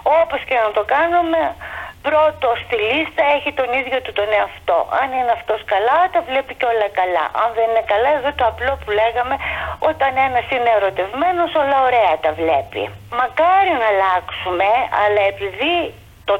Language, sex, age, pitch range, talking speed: Greek, female, 30-49, 210-320 Hz, 170 wpm